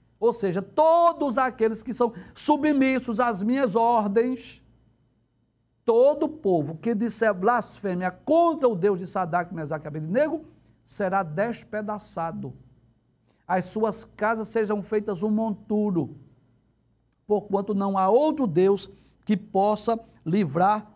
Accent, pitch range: Brazilian, 185-240 Hz